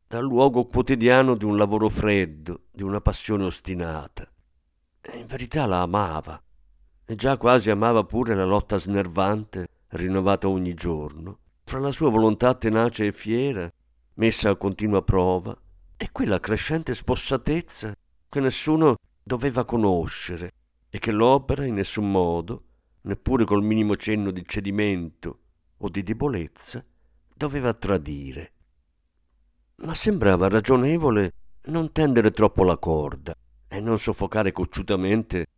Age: 50-69